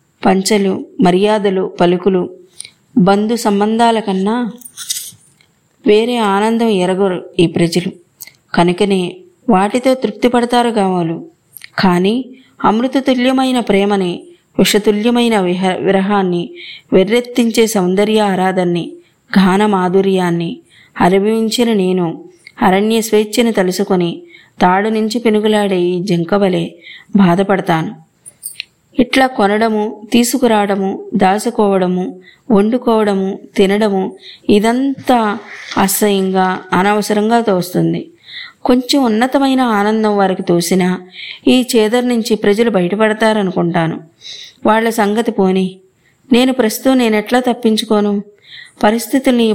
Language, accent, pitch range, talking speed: Telugu, native, 190-235 Hz, 75 wpm